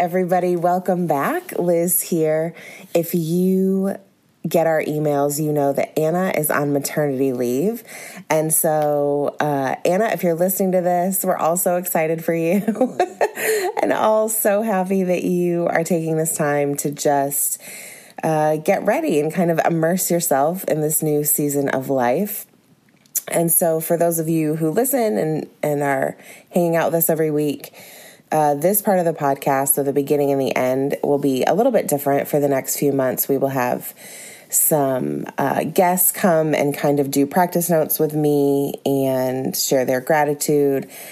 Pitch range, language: 145-180 Hz, English